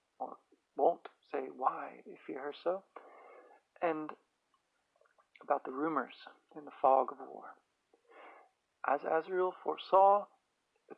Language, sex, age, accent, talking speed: English, male, 40-59, American, 115 wpm